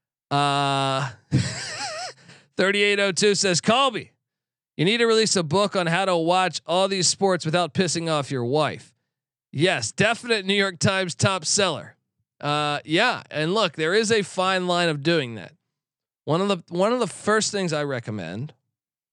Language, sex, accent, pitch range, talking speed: English, male, American, 140-195 Hz, 160 wpm